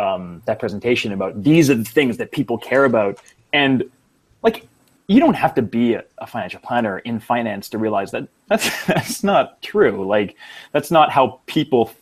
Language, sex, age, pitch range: English, male, 20-39, 115-160 Hz